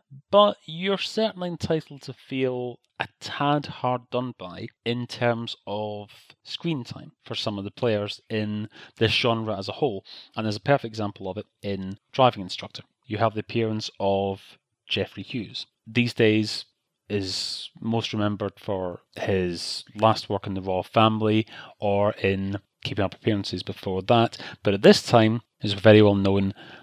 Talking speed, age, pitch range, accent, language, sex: 160 wpm, 30-49, 105-140 Hz, British, English, male